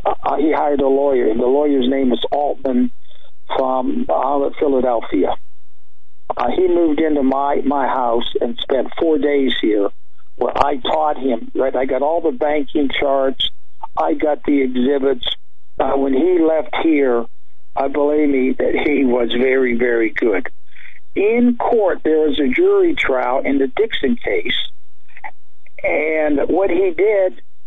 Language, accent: English, American